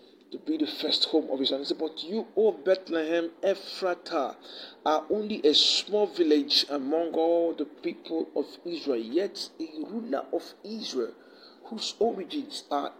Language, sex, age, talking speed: English, male, 50-69, 145 wpm